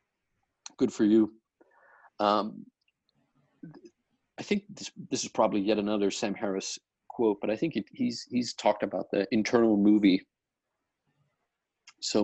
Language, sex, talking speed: English, male, 130 wpm